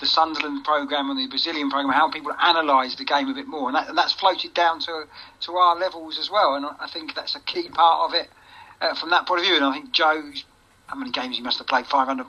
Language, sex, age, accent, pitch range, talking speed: English, male, 40-59, British, 150-200 Hz, 265 wpm